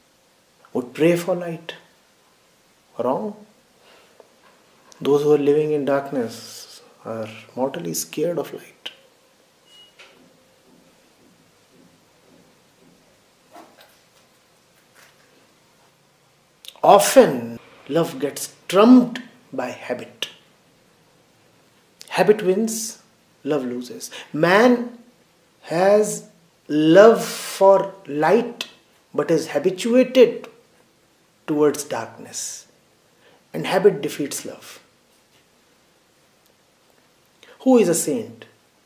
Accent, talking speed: Indian, 70 wpm